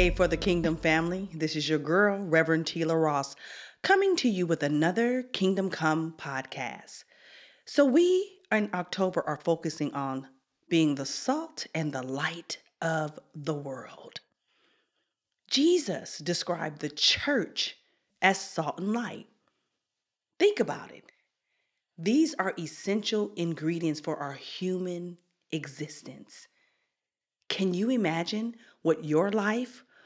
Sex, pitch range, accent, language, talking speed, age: female, 160-220 Hz, American, English, 120 wpm, 40-59